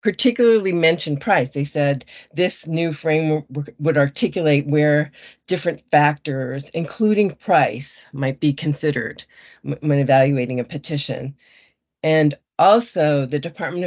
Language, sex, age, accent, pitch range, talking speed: English, female, 50-69, American, 140-165 Hz, 115 wpm